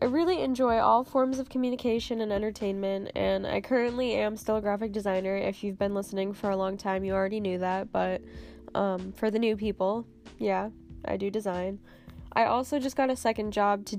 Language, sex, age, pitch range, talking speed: English, female, 10-29, 190-215 Hz, 200 wpm